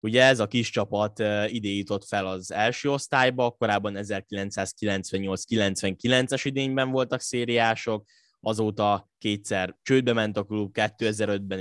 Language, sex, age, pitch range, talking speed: Hungarian, male, 10-29, 100-125 Hz, 120 wpm